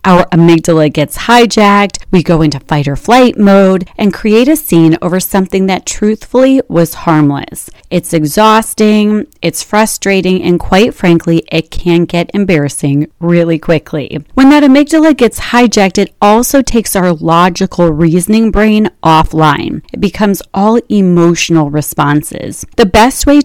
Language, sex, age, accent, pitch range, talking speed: English, female, 30-49, American, 160-215 Hz, 140 wpm